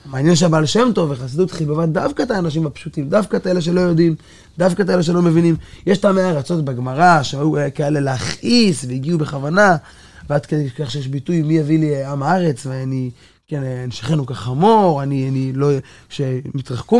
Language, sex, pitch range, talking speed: Hebrew, male, 140-180 Hz, 170 wpm